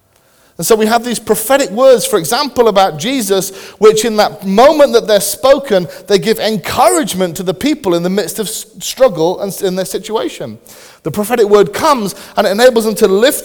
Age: 30-49